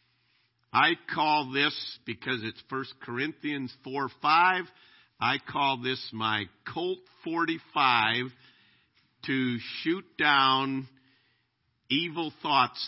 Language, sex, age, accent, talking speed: English, male, 50-69, American, 95 wpm